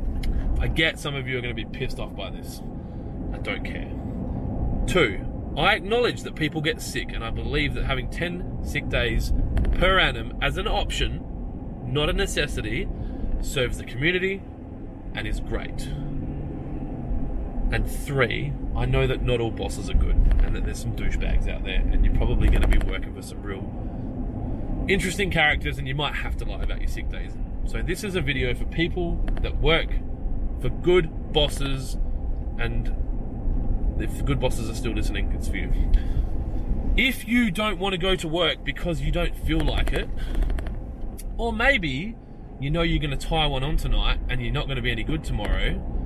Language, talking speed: English, 185 wpm